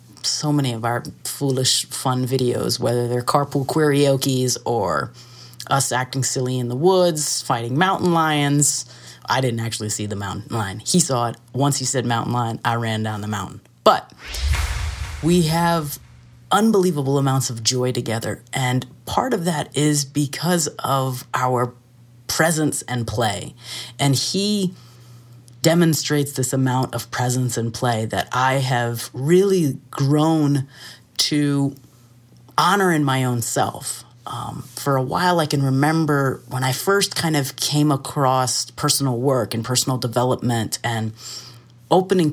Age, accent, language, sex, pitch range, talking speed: 30-49, American, English, female, 120-145 Hz, 145 wpm